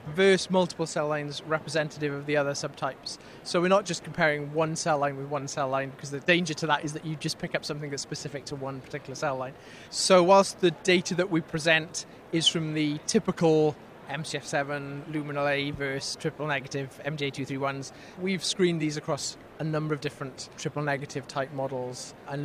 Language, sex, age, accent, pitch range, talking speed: English, male, 30-49, British, 140-165 Hz, 190 wpm